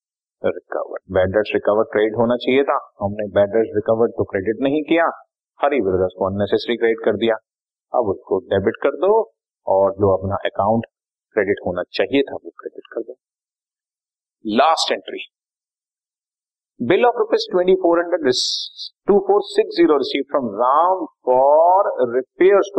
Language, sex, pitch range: Hindi, male, 115-180 Hz